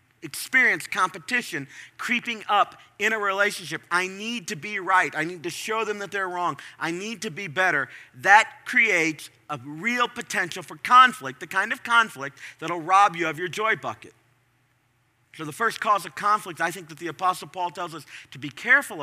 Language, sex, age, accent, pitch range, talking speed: English, male, 40-59, American, 150-215 Hz, 190 wpm